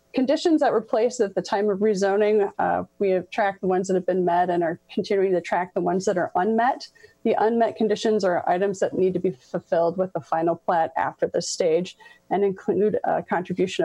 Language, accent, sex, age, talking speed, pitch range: English, American, female, 30-49, 215 wpm, 180-220 Hz